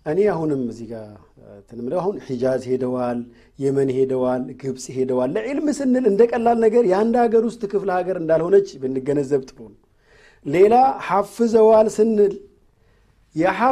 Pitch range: 140-230 Hz